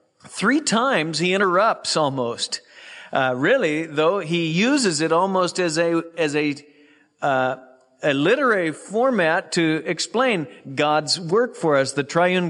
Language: English